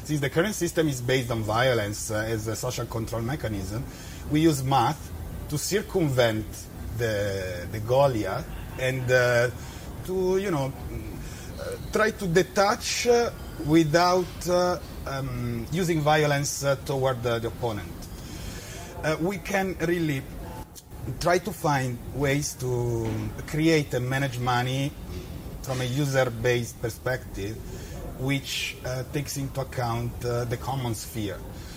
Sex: male